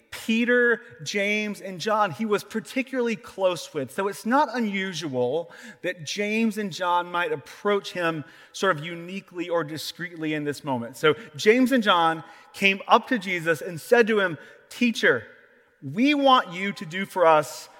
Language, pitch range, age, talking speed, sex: English, 170-235 Hz, 30-49, 160 wpm, male